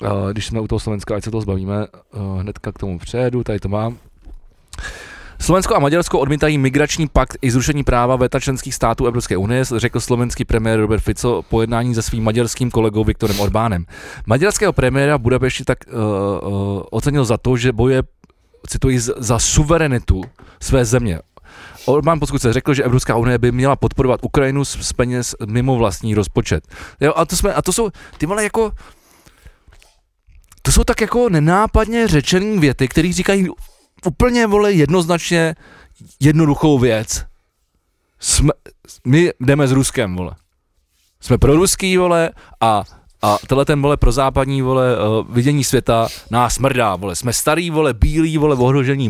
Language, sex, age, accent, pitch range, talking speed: Czech, male, 20-39, native, 110-150 Hz, 160 wpm